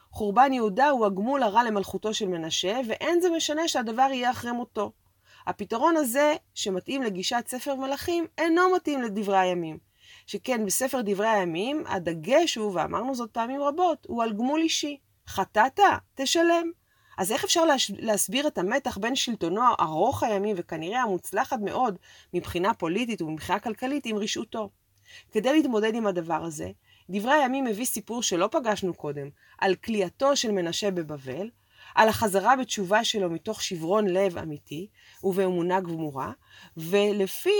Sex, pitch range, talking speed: female, 185-270 Hz, 140 wpm